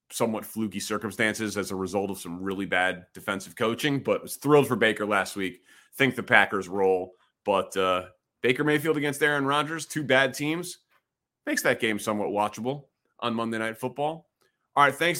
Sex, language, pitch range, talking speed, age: male, English, 105-125 Hz, 180 wpm, 30-49